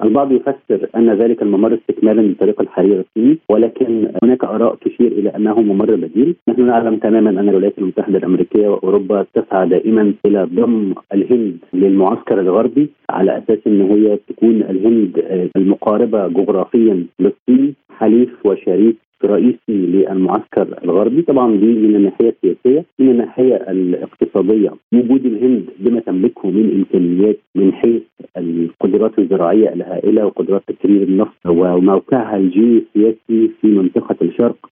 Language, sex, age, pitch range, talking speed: Arabic, male, 50-69, 95-120 Hz, 125 wpm